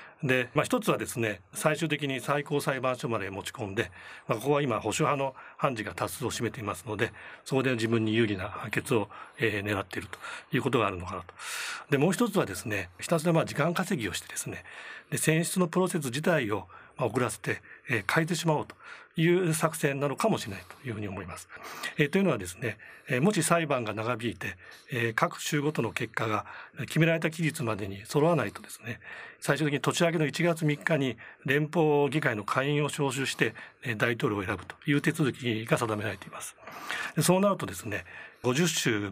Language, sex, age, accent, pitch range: Japanese, male, 40-59, native, 115-165 Hz